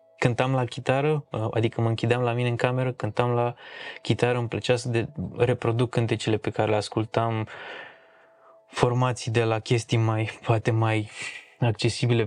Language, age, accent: Romanian, 20-39, native